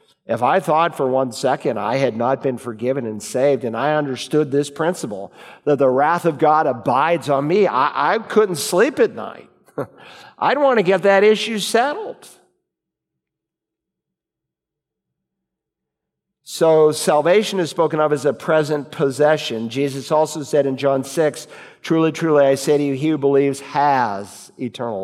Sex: male